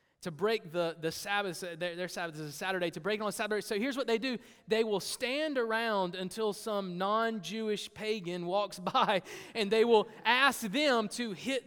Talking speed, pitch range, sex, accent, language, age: 195 wpm, 190-250 Hz, male, American, English, 30-49